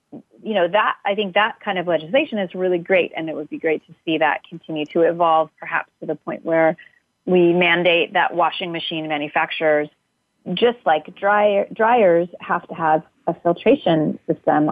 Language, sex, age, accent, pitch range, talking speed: English, female, 30-49, American, 155-180 Hz, 180 wpm